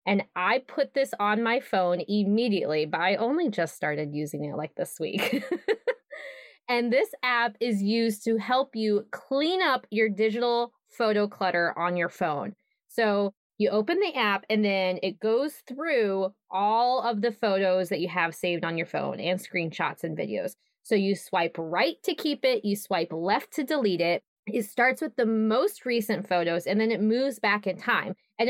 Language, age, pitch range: English, 20-39, 190-240 Hz